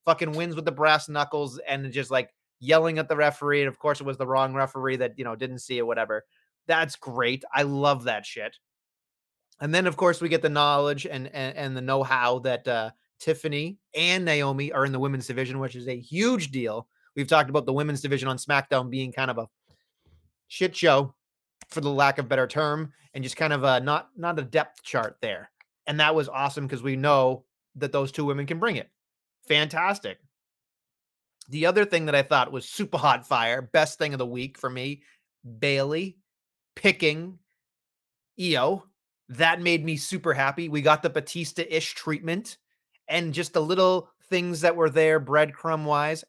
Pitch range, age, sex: 135-165 Hz, 30-49, male